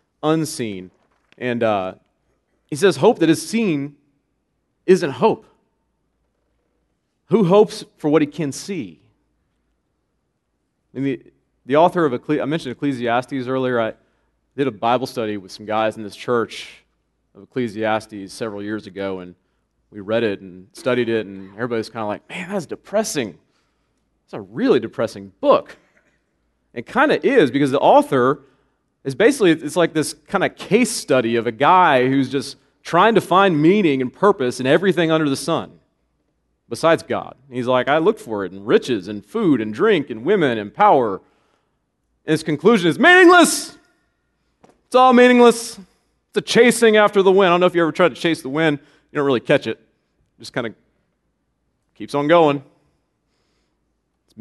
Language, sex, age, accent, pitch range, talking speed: English, male, 30-49, American, 115-185 Hz, 165 wpm